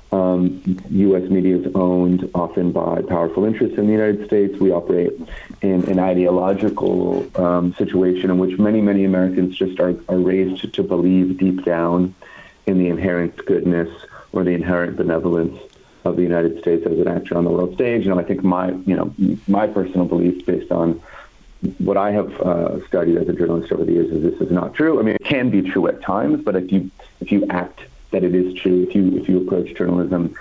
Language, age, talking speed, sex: English, 50-69, 205 wpm, male